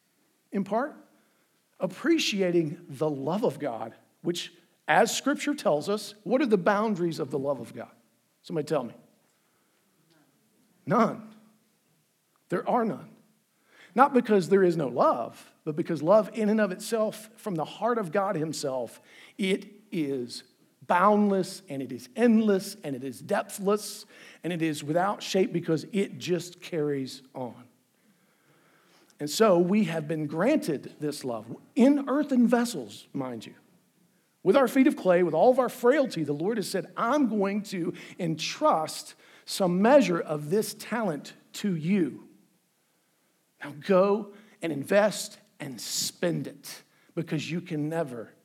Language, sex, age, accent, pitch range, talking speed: English, male, 50-69, American, 160-215 Hz, 145 wpm